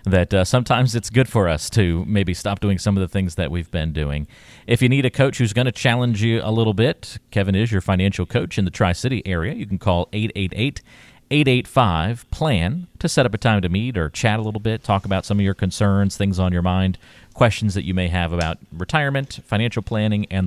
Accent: American